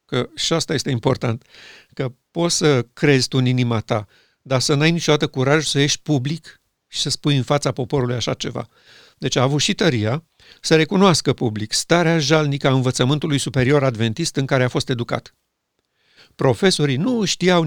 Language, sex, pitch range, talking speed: Romanian, male, 130-165 Hz, 170 wpm